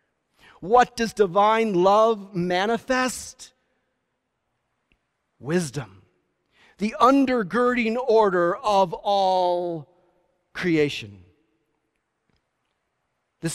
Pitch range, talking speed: 160-215 Hz, 60 wpm